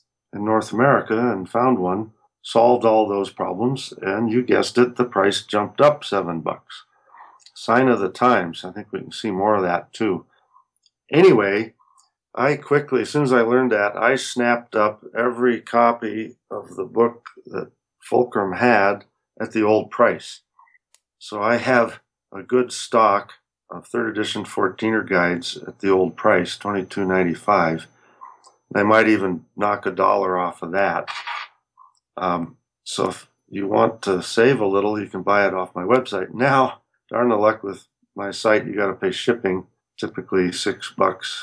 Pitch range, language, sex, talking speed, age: 95-120 Hz, English, male, 165 wpm, 50-69